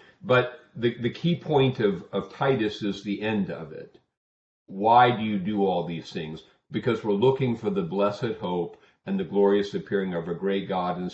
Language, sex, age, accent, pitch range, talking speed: English, male, 40-59, American, 90-115 Hz, 195 wpm